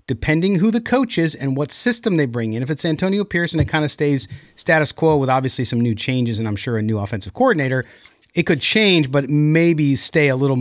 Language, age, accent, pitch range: English, 40-59, American, 125-160 Hz